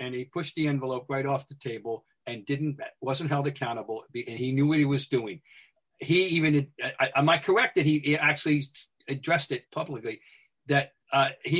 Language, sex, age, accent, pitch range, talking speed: English, male, 50-69, American, 130-155 Hz, 185 wpm